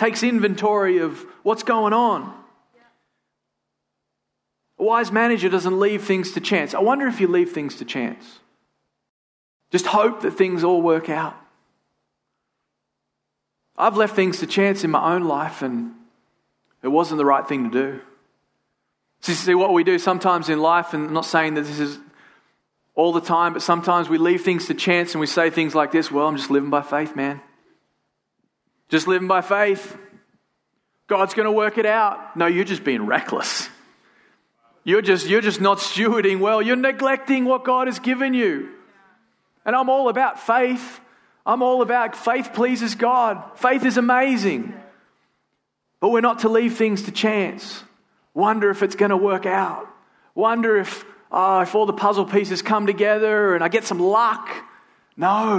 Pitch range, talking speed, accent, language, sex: 160-215 Hz, 165 wpm, Australian, English, male